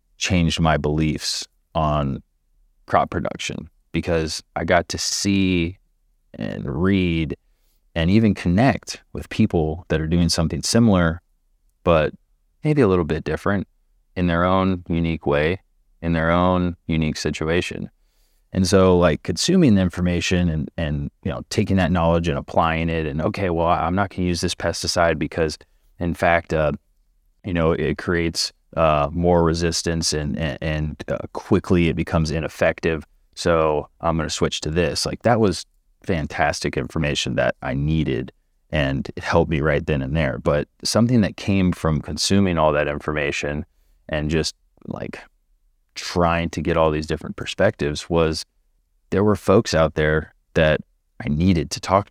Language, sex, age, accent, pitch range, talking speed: English, male, 30-49, American, 75-90 Hz, 155 wpm